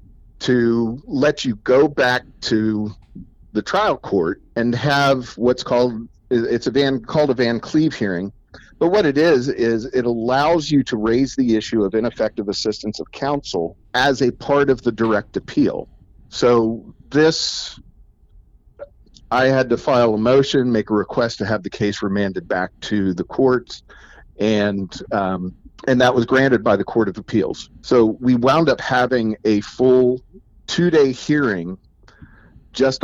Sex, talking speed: male, 155 wpm